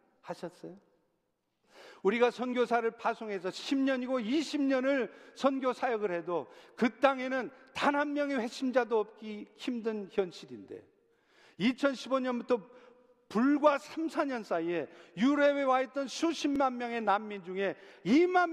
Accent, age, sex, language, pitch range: native, 50-69, male, Korean, 195-265 Hz